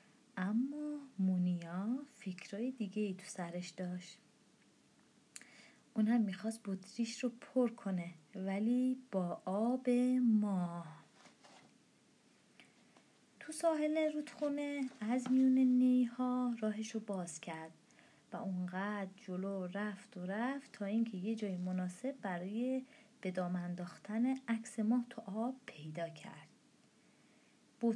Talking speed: 105 wpm